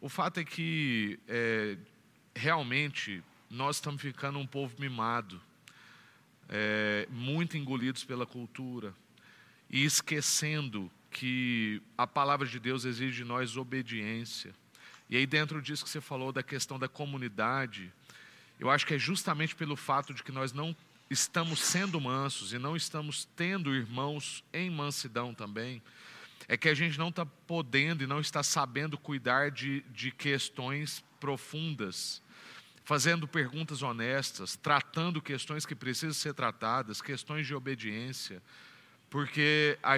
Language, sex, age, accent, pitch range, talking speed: Portuguese, male, 40-59, Brazilian, 125-155 Hz, 135 wpm